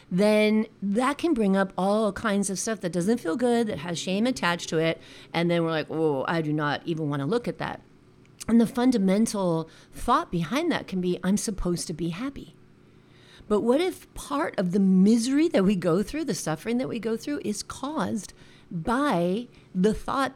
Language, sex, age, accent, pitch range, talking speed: English, female, 40-59, American, 165-230 Hz, 200 wpm